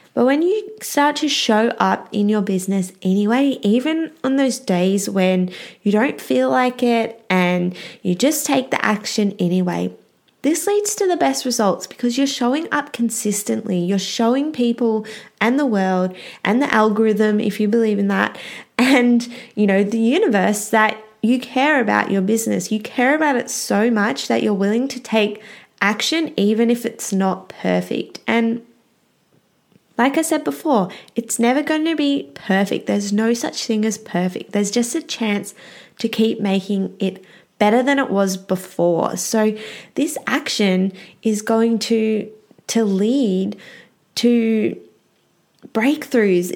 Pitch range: 200-245 Hz